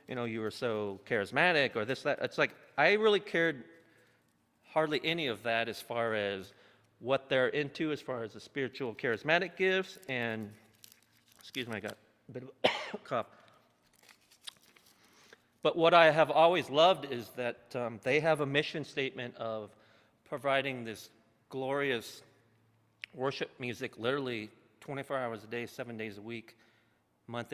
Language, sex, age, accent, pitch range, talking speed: English, male, 40-59, American, 115-155 Hz, 155 wpm